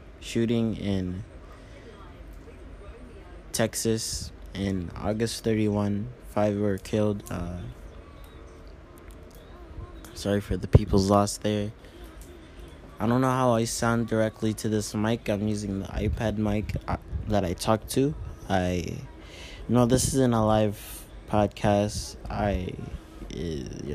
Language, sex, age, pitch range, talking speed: English, male, 20-39, 85-105 Hz, 110 wpm